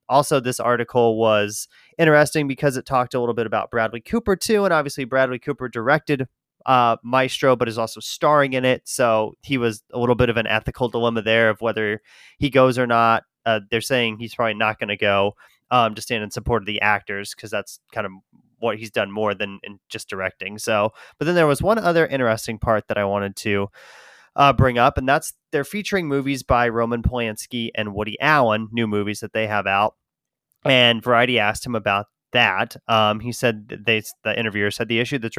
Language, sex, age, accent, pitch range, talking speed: English, male, 30-49, American, 110-135 Hz, 205 wpm